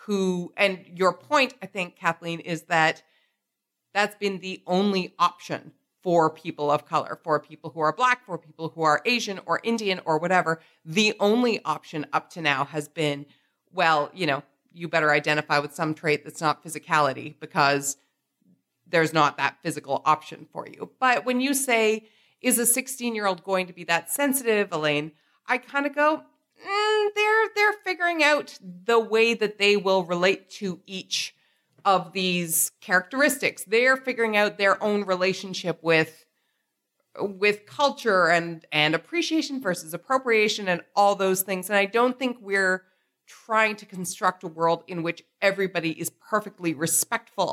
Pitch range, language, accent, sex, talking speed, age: 165-220 Hz, English, American, female, 160 wpm, 40-59